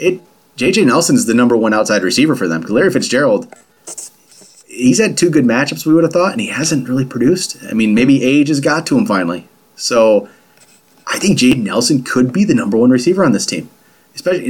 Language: English